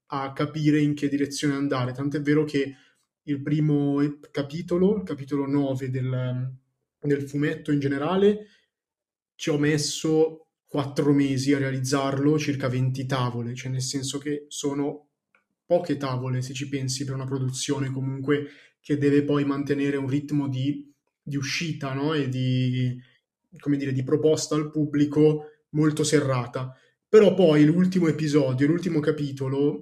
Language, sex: Italian, male